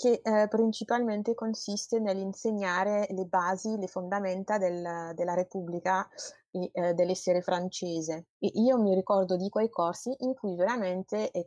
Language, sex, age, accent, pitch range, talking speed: Italian, female, 20-39, native, 180-215 Hz, 125 wpm